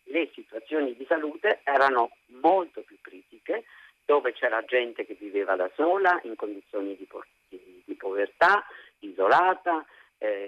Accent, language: native, Italian